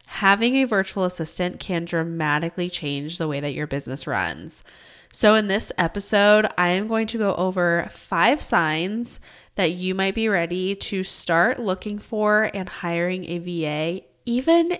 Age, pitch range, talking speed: 20-39, 170-220 Hz, 160 wpm